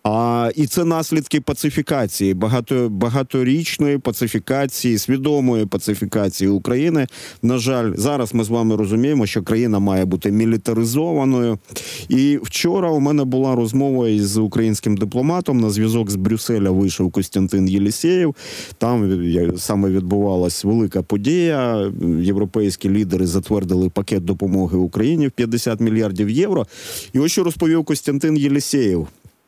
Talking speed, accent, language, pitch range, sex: 120 wpm, native, Ukrainian, 100-135 Hz, male